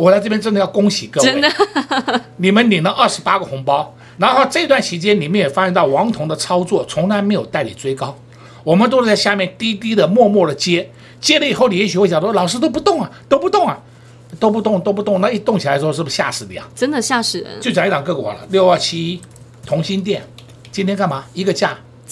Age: 60-79